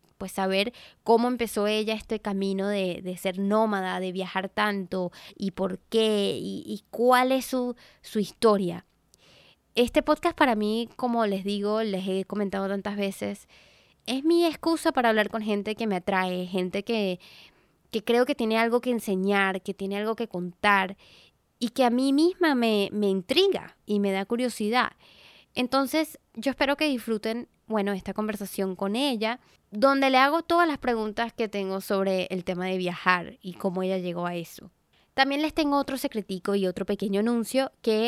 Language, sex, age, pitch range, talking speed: English, female, 20-39, 195-245 Hz, 175 wpm